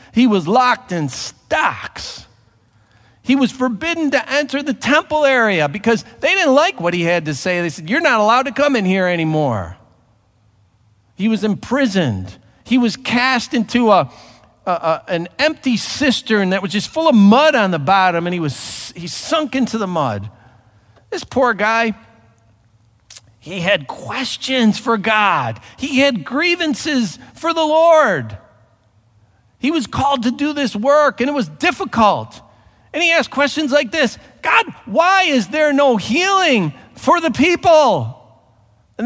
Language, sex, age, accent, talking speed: English, male, 50-69, American, 150 wpm